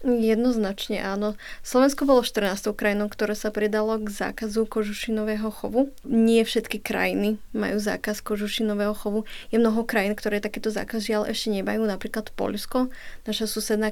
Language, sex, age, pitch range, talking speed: Slovak, female, 20-39, 205-220 Hz, 140 wpm